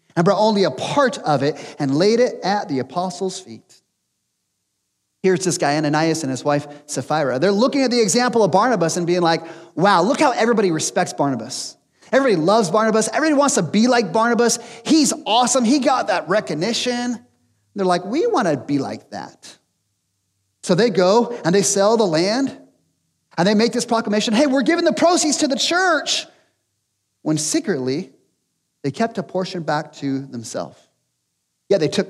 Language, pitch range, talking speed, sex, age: English, 140-220 Hz, 180 wpm, male, 30-49